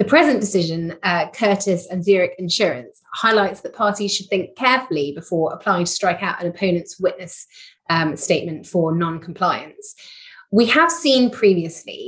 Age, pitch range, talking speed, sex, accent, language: 30-49, 170-205 Hz, 150 wpm, female, British, English